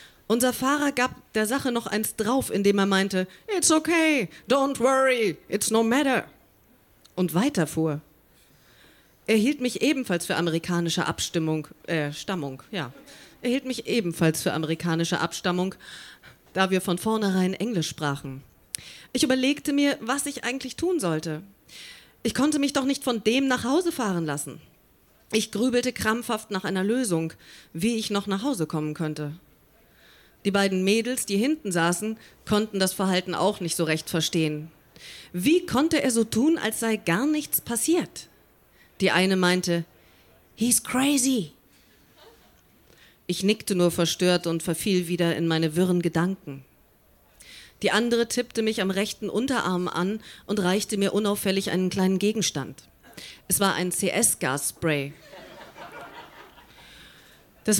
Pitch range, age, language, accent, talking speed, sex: 170-245 Hz, 30-49, German, German, 140 wpm, female